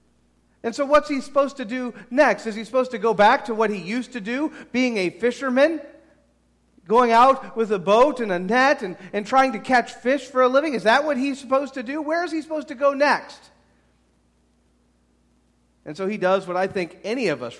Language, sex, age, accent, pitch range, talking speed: English, male, 40-59, American, 155-245 Hz, 220 wpm